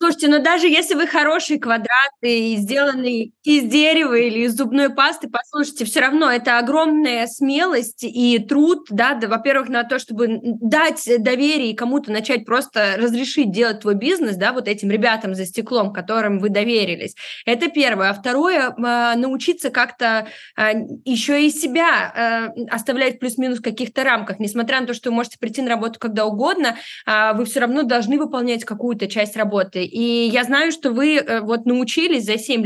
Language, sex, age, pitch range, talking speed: Russian, female, 20-39, 230-285 Hz, 165 wpm